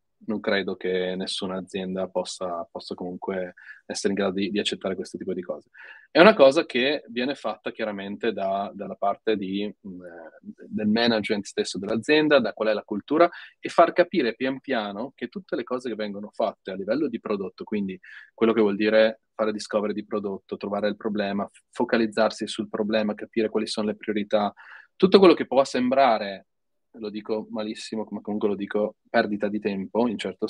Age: 30-49